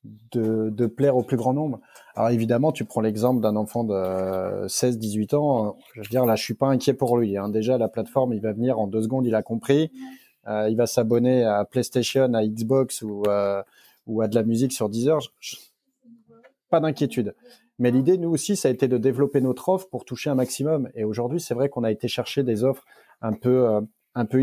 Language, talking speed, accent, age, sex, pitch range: French, 220 wpm, French, 30-49, male, 110-135 Hz